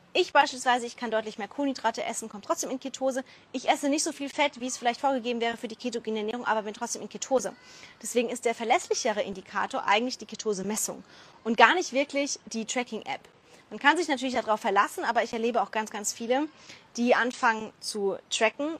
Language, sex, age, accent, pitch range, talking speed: German, female, 20-39, German, 220-265 Hz, 200 wpm